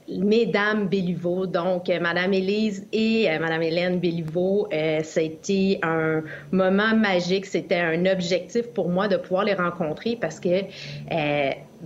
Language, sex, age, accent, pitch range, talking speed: French, female, 30-49, Canadian, 175-220 Hz, 135 wpm